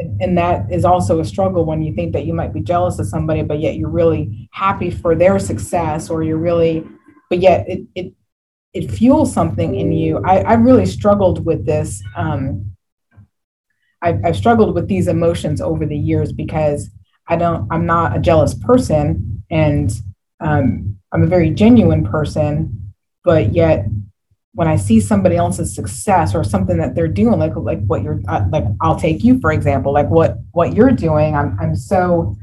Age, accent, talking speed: 30-49, American, 185 wpm